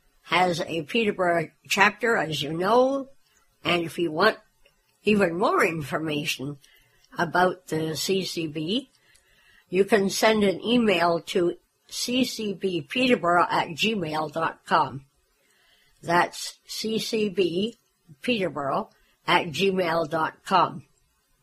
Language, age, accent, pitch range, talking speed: English, 60-79, American, 165-210 Hz, 85 wpm